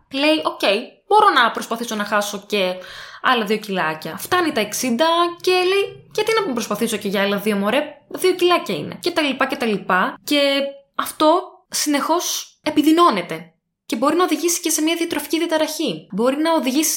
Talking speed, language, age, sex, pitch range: 180 wpm, Greek, 20-39, female, 205-320 Hz